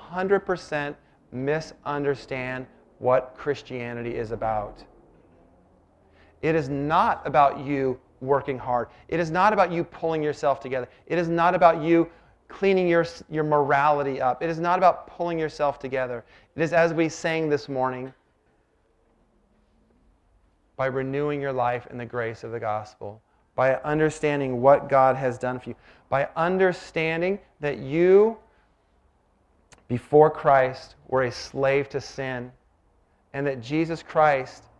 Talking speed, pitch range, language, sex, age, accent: 140 wpm, 125-165 Hz, English, male, 30-49, American